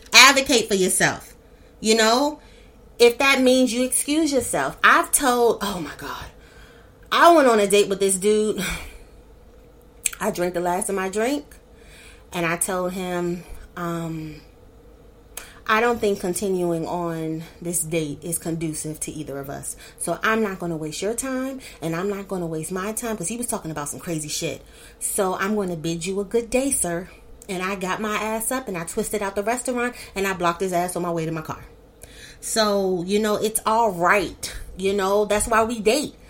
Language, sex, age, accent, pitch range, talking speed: English, female, 30-49, American, 170-220 Hz, 195 wpm